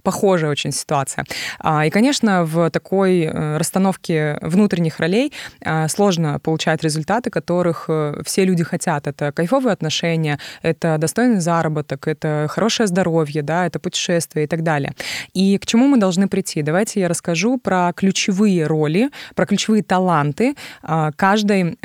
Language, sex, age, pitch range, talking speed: Russian, female, 20-39, 160-195 Hz, 130 wpm